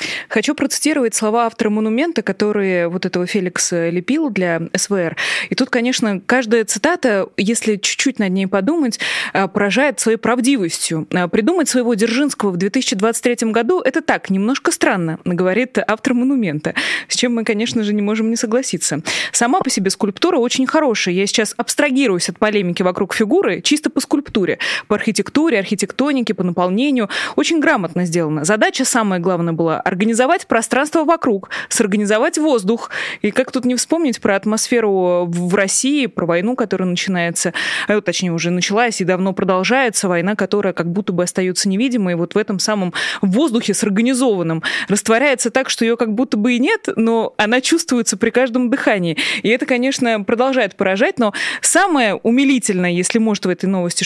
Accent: native